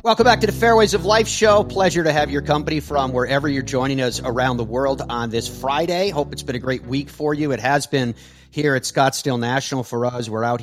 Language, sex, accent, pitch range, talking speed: English, male, American, 115-140 Hz, 245 wpm